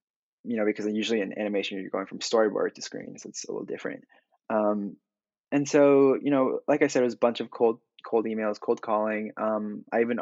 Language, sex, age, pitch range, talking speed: English, male, 20-39, 105-125 Hz, 225 wpm